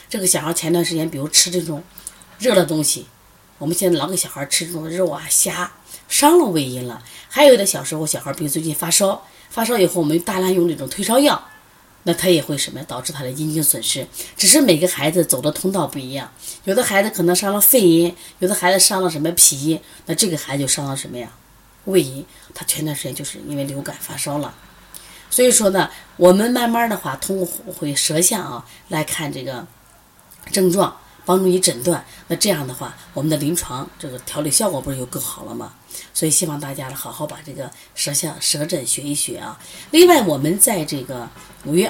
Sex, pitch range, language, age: female, 145-185 Hz, Chinese, 30-49